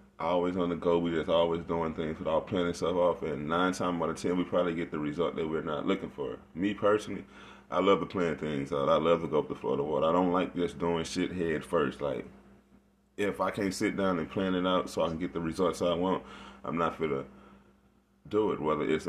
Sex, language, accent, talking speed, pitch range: male, English, American, 255 wpm, 80-90 Hz